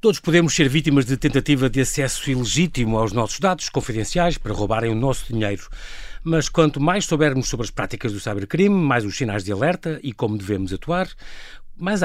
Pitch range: 115-160 Hz